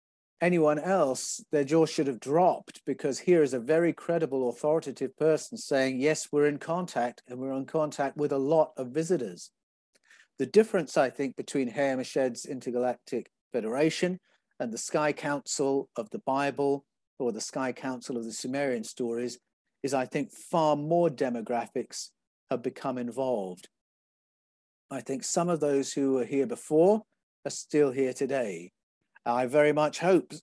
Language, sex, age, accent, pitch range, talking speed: English, male, 50-69, British, 130-155 Hz, 155 wpm